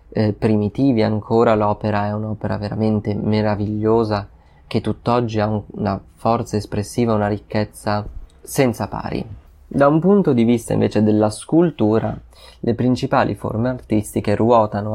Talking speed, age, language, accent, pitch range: 125 wpm, 20-39, Italian, native, 105-110 Hz